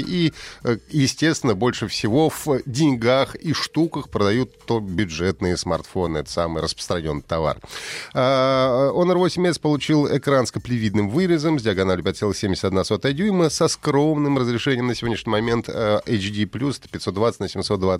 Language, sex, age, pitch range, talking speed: Russian, male, 30-49, 95-135 Hz, 115 wpm